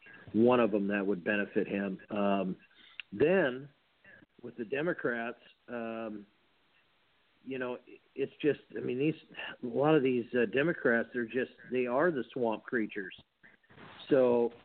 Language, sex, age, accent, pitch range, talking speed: English, male, 50-69, American, 115-130 Hz, 140 wpm